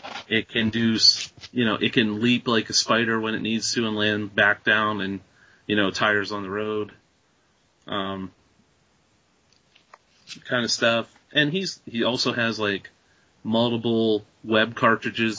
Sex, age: male, 30-49